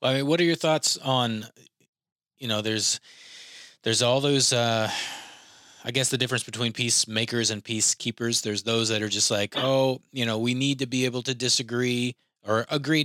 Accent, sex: American, male